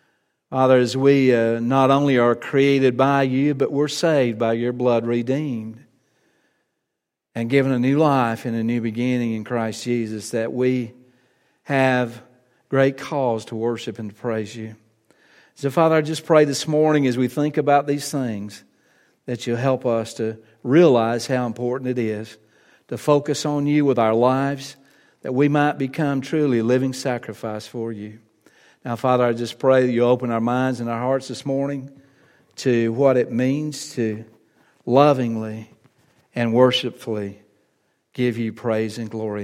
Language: English